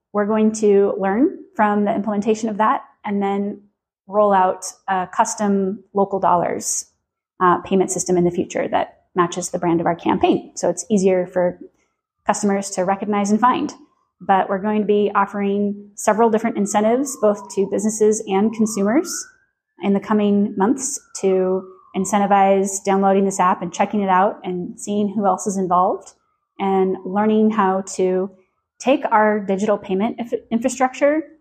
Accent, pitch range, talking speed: American, 185-215 Hz, 155 wpm